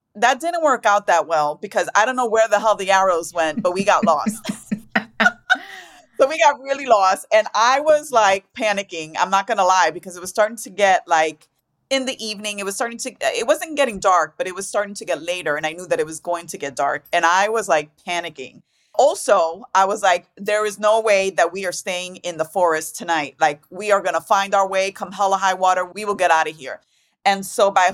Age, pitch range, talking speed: 30-49, 175-235 Hz, 240 wpm